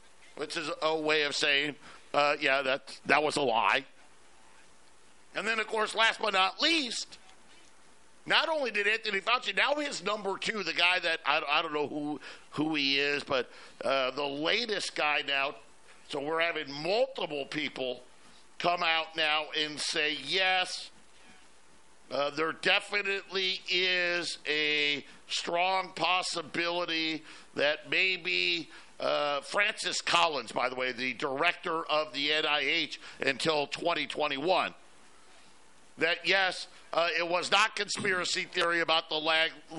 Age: 50-69